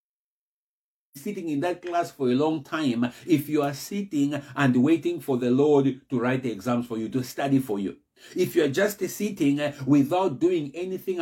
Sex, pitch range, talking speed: male, 135-195 Hz, 185 wpm